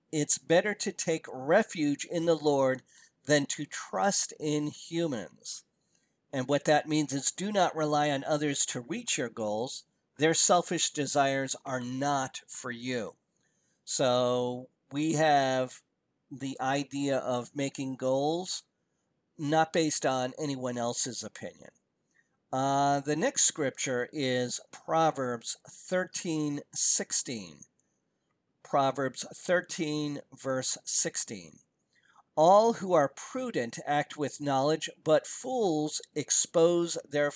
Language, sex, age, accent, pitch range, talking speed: English, male, 50-69, American, 135-170 Hz, 115 wpm